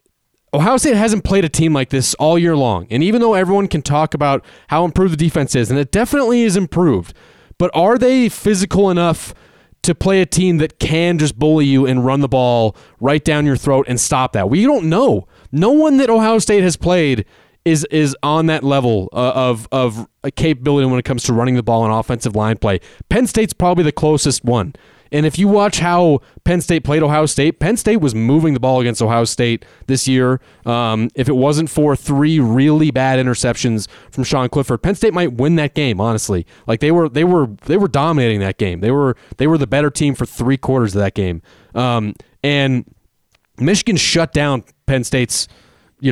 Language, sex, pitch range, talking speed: English, male, 120-165 Hz, 210 wpm